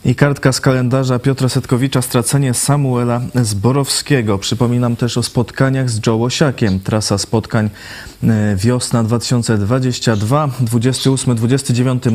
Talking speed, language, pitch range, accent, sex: 105 wpm, Polish, 105-125 Hz, native, male